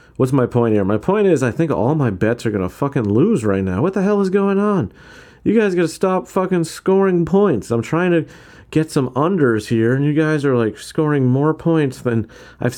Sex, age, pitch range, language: male, 40-59, 115-160 Hz, English